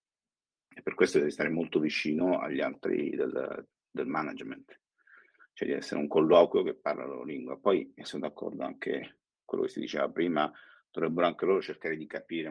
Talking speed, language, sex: 185 wpm, Italian, male